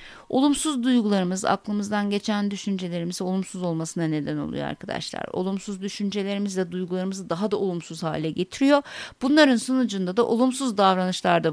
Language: Turkish